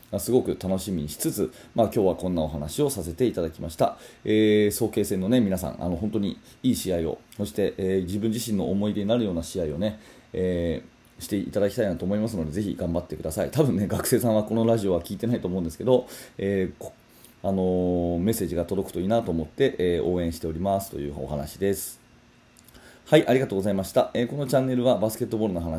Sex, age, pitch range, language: male, 30-49, 90-120 Hz, Japanese